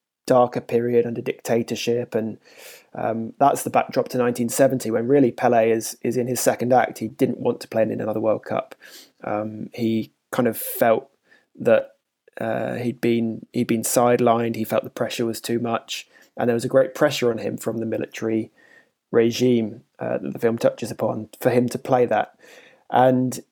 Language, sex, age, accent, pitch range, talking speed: English, male, 20-39, British, 115-125 Hz, 185 wpm